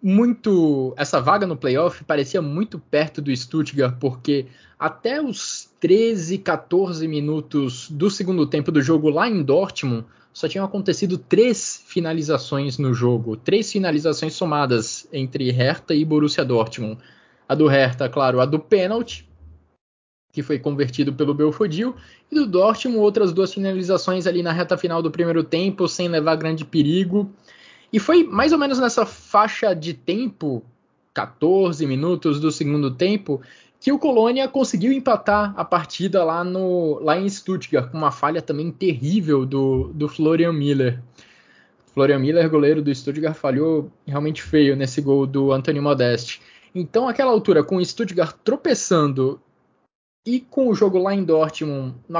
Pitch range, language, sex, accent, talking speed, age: 140-195 Hz, Portuguese, male, Brazilian, 150 wpm, 20-39